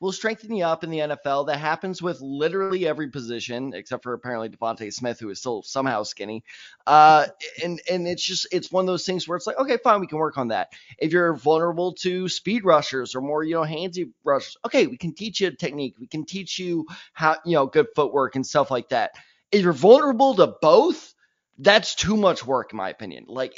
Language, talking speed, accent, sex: English, 225 wpm, American, male